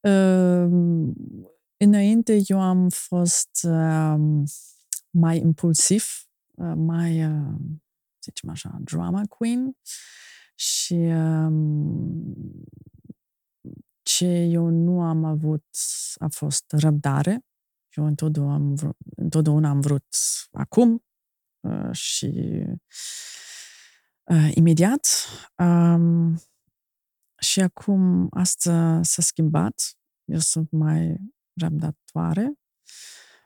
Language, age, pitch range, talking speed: Romanian, 30-49, 155-180 Hz, 85 wpm